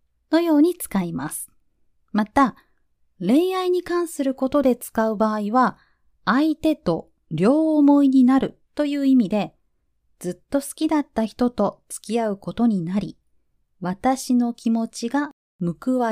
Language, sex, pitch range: Japanese, female, 185-250 Hz